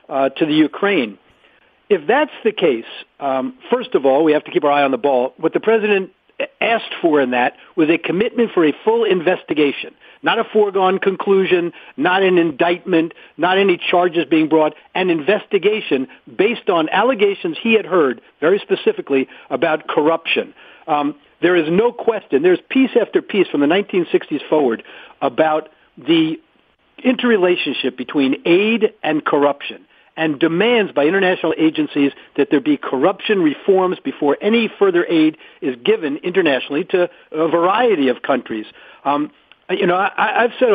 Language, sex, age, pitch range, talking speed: English, male, 50-69, 155-260 Hz, 160 wpm